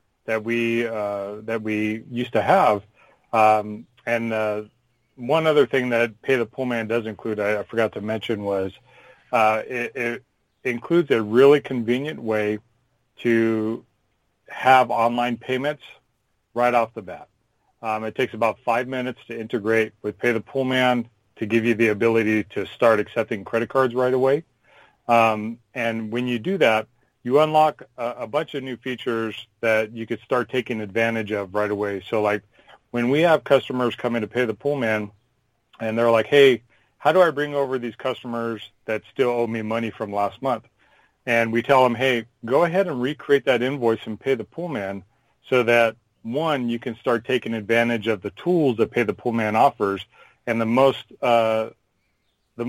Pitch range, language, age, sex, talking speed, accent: 110-130 Hz, English, 40-59, male, 180 wpm, American